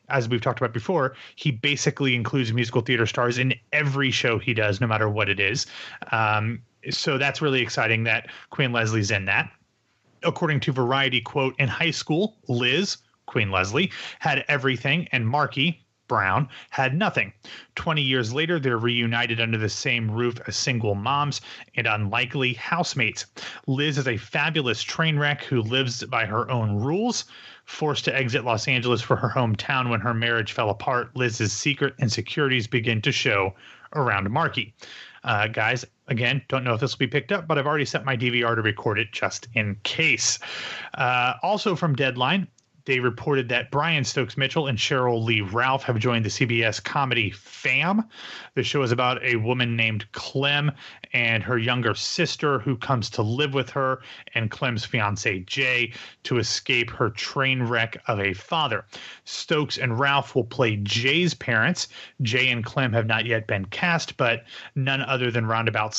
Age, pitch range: 30-49, 115-140 Hz